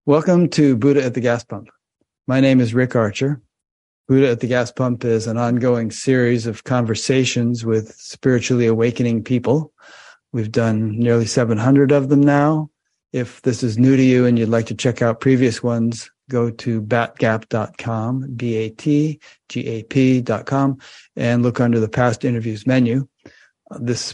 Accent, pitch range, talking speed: American, 115-130 Hz, 150 wpm